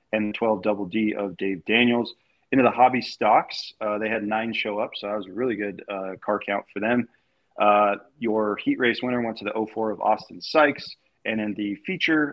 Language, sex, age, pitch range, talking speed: English, male, 20-39, 105-125 Hz, 210 wpm